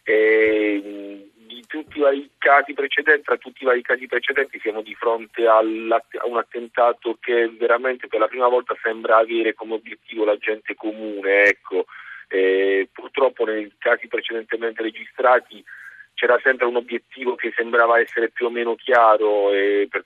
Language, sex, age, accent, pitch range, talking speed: Italian, male, 40-59, native, 110-135 Hz, 155 wpm